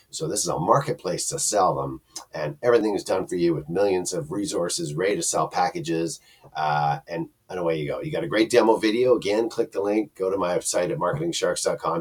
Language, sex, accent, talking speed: English, male, American, 220 wpm